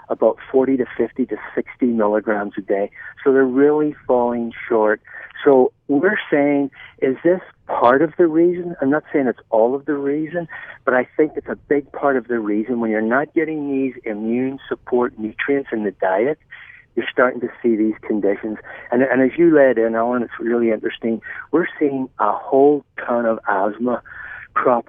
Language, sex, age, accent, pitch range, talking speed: English, male, 50-69, American, 115-140 Hz, 185 wpm